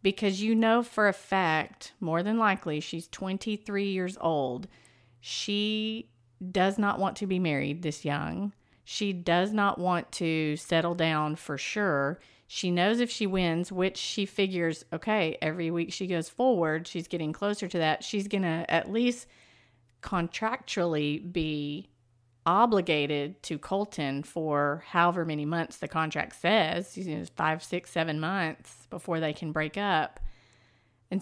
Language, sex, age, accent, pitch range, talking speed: English, female, 40-59, American, 155-200 Hz, 150 wpm